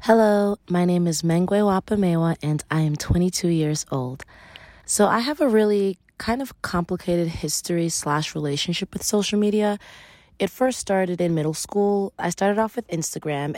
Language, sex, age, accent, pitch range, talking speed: English, female, 20-39, American, 165-200 Hz, 165 wpm